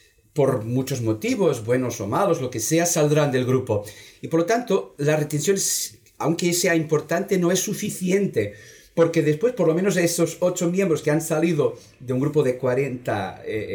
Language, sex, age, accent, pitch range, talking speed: Spanish, male, 40-59, Spanish, 120-165 Hz, 180 wpm